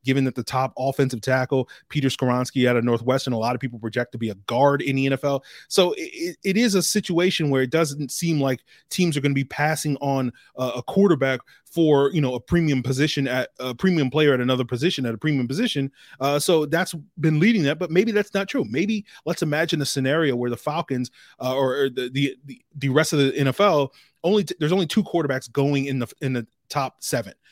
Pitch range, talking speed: 130-155 Hz, 220 wpm